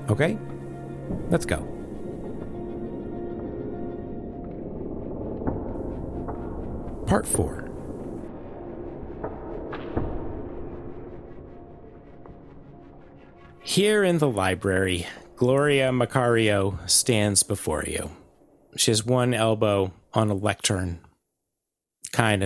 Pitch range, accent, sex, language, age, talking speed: 95-115 Hz, American, male, English, 40-59, 60 wpm